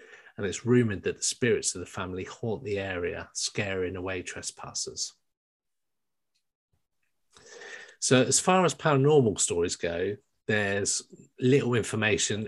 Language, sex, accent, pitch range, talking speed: English, male, British, 100-130 Hz, 120 wpm